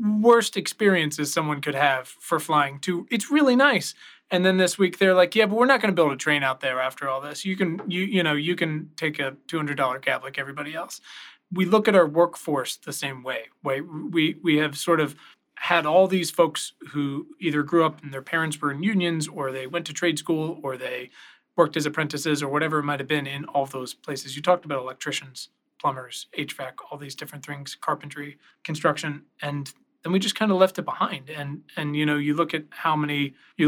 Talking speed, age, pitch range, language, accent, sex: 225 wpm, 30-49, 140-175 Hz, English, American, male